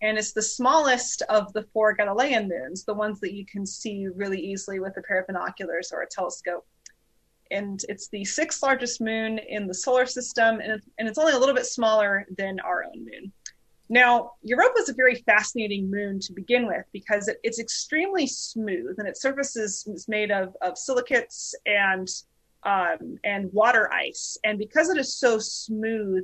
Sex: female